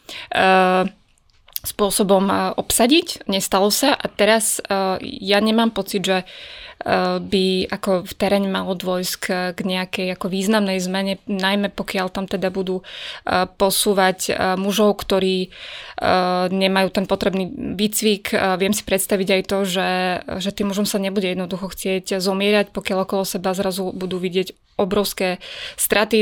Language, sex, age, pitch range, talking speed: Slovak, female, 20-39, 190-210 Hz, 130 wpm